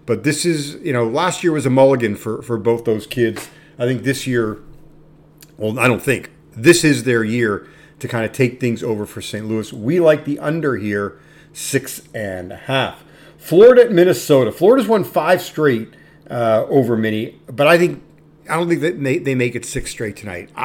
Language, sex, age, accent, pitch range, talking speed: English, male, 50-69, American, 115-155 Hz, 200 wpm